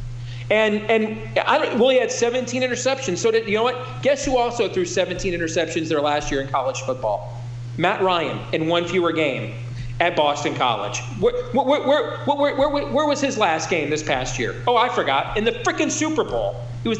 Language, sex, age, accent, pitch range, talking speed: English, male, 40-59, American, 145-245 Hz, 210 wpm